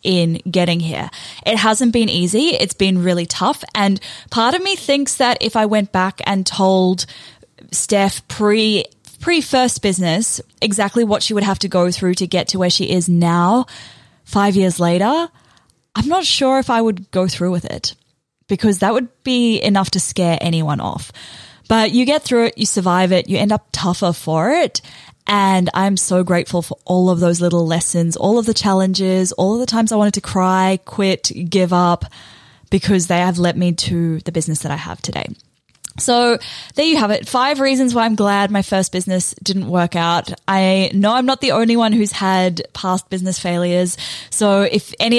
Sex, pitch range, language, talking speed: female, 180-225 Hz, English, 195 wpm